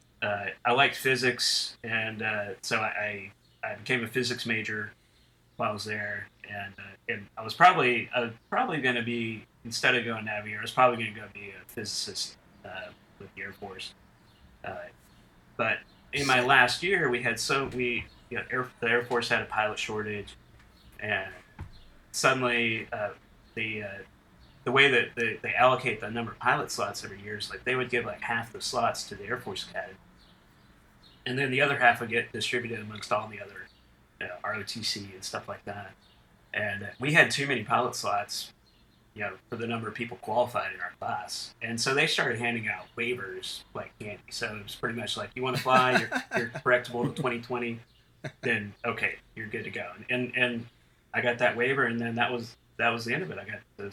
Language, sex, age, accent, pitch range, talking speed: English, male, 30-49, American, 105-120 Hz, 205 wpm